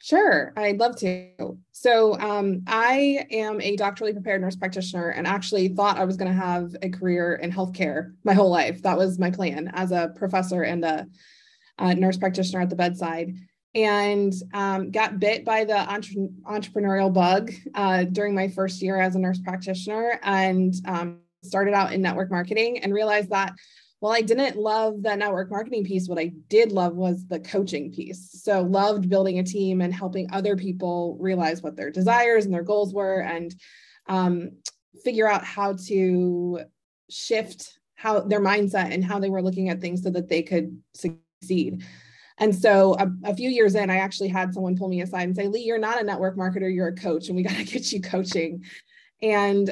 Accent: American